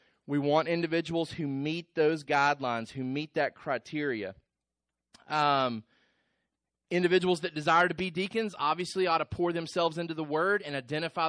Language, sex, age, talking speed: English, male, 30-49, 150 wpm